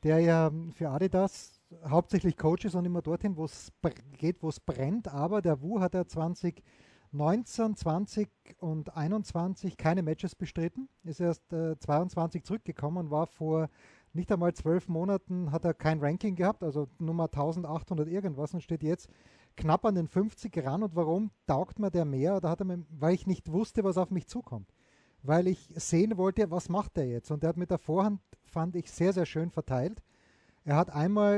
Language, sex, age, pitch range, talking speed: German, male, 30-49, 160-190 Hz, 190 wpm